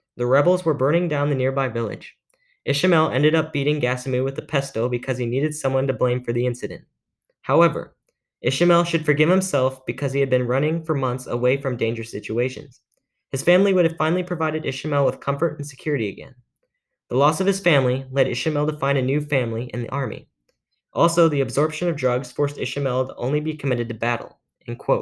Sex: male